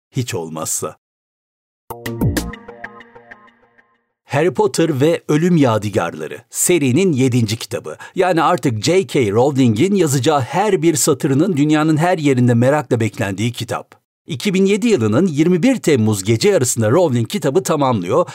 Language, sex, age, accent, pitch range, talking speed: Turkish, male, 60-79, native, 115-170 Hz, 110 wpm